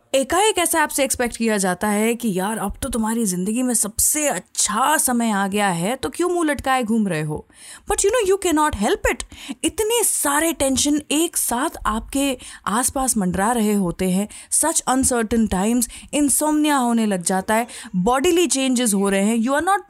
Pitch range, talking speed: 190-270 Hz, 185 wpm